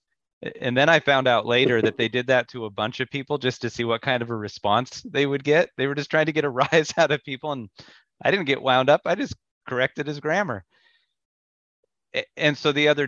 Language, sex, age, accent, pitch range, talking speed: English, male, 30-49, American, 110-135 Hz, 240 wpm